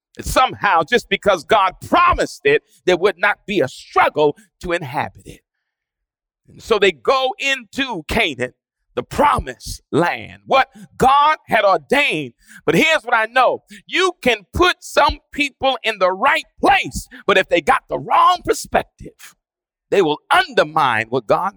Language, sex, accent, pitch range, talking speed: English, male, American, 180-260 Hz, 150 wpm